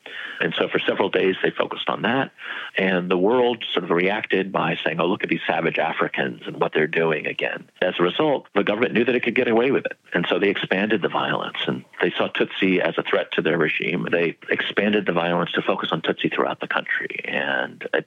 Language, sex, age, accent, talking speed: English, male, 50-69, American, 230 wpm